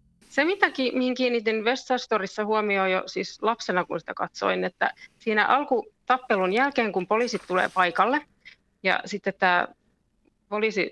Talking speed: 130 wpm